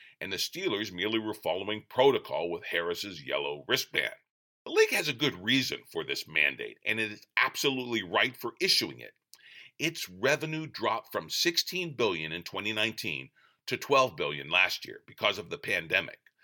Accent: American